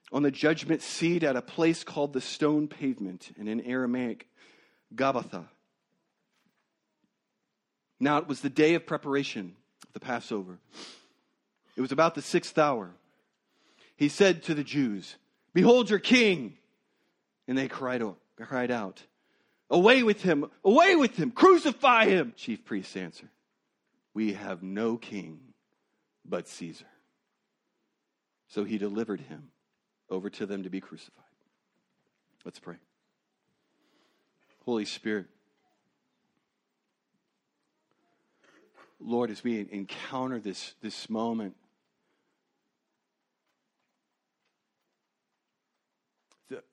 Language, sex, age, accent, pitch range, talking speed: English, male, 40-59, American, 110-160 Hz, 110 wpm